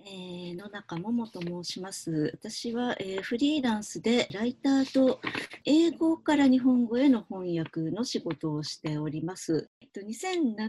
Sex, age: female, 40-59